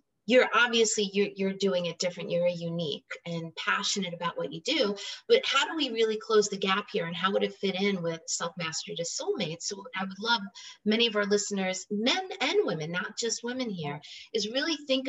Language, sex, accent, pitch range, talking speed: English, female, American, 190-235 Hz, 210 wpm